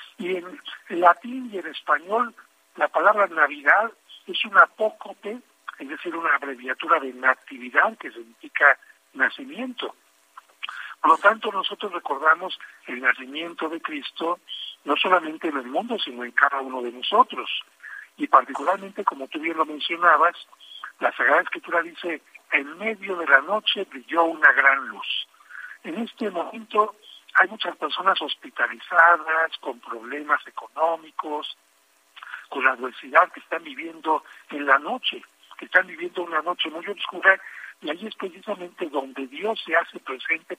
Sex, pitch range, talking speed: male, 150-210 Hz, 140 wpm